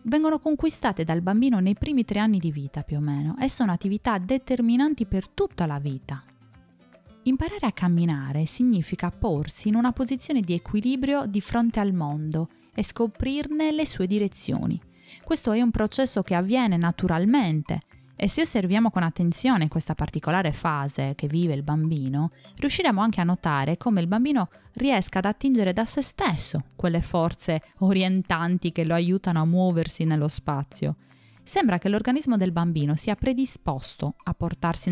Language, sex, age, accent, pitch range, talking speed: Italian, female, 20-39, native, 160-225 Hz, 155 wpm